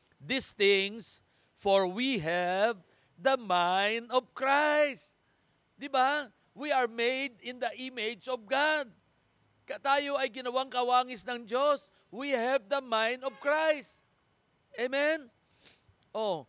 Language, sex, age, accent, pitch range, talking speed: Filipino, male, 50-69, native, 195-260 Hz, 125 wpm